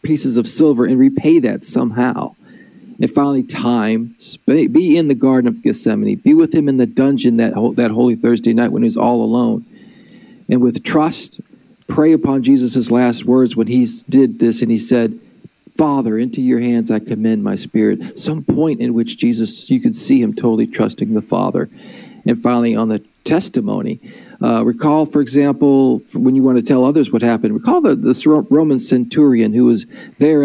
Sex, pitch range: male, 115-155 Hz